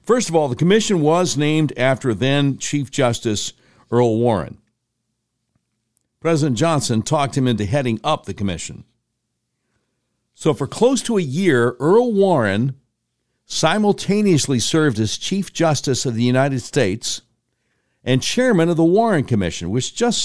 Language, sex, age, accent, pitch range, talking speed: English, male, 60-79, American, 115-160 Hz, 135 wpm